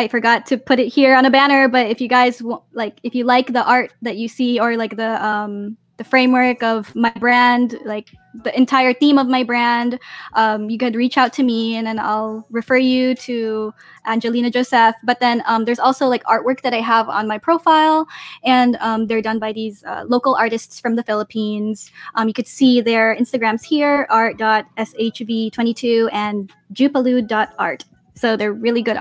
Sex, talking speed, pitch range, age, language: female, 190 wpm, 215-250 Hz, 10-29, English